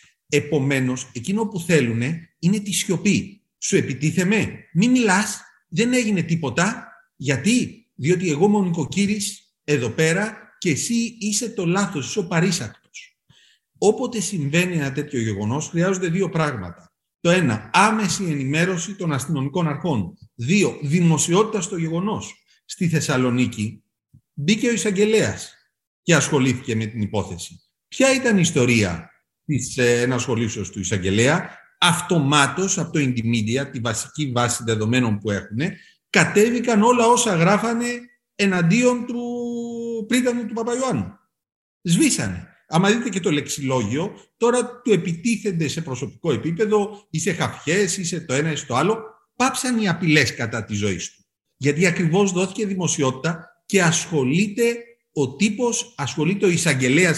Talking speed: 130 wpm